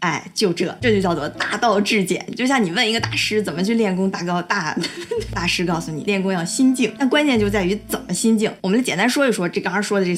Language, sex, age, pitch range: Chinese, female, 20-39, 185-235 Hz